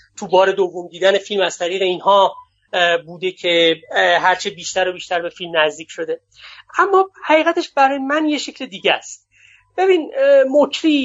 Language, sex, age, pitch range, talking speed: Persian, male, 30-49, 185-245 Hz, 150 wpm